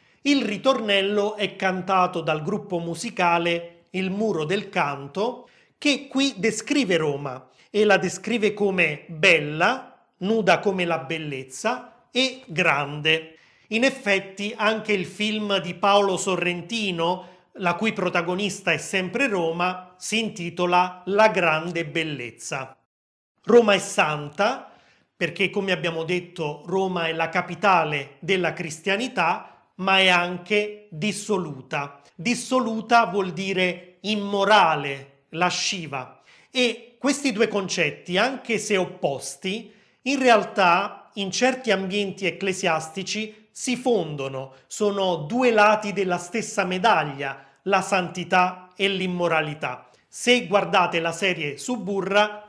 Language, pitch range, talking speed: Italian, 170-210 Hz, 110 wpm